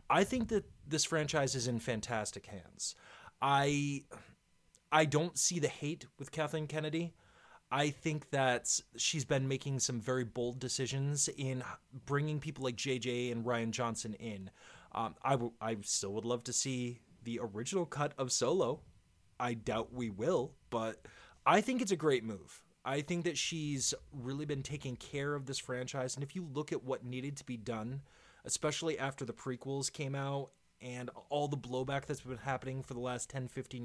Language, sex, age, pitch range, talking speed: English, male, 30-49, 125-155 Hz, 180 wpm